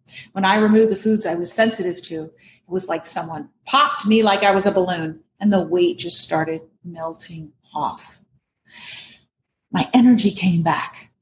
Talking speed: 165 wpm